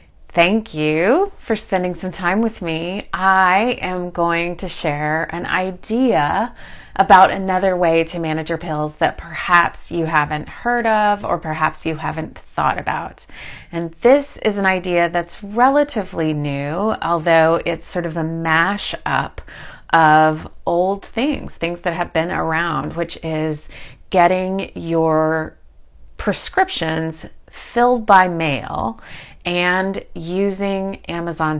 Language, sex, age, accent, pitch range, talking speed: English, female, 30-49, American, 160-195 Hz, 125 wpm